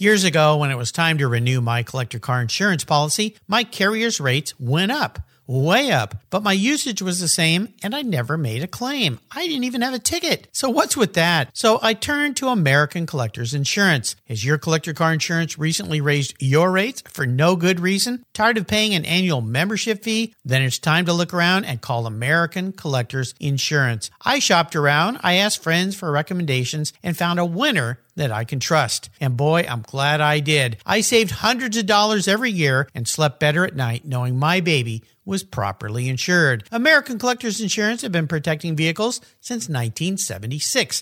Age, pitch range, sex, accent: 50-69, 135-210 Hz, male, American